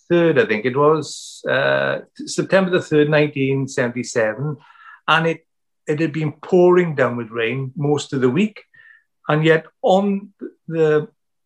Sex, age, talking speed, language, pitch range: male, 50-69, 135 wpm, English, 130-155 Hz